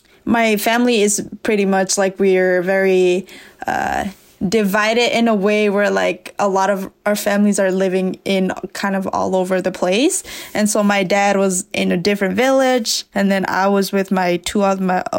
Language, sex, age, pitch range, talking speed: English, female, 20-39, 195-215 Hz, 185 wpm